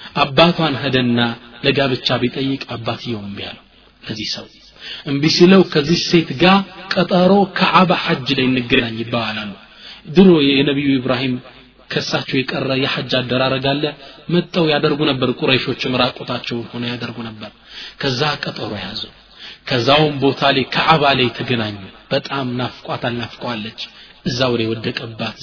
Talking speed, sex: 110 wpm, male